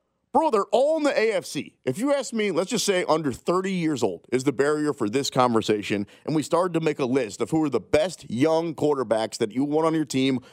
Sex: male